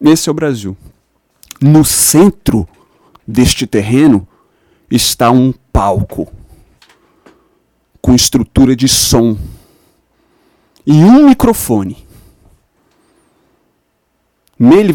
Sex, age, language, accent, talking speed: male, 40-59, Portuguese, Brazilian, 75 wpm